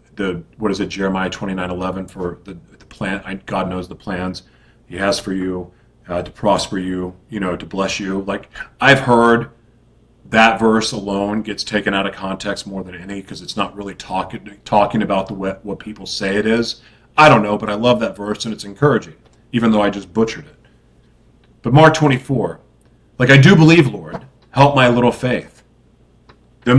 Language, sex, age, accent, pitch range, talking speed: English, male, 40-59, American, 95-125 Hz, 195 wpm